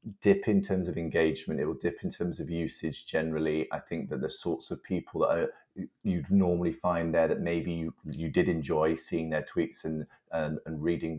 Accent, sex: British, male